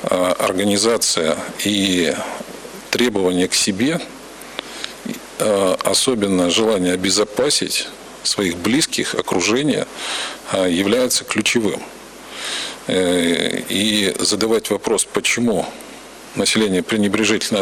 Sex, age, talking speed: male, 50-69, 65 wpm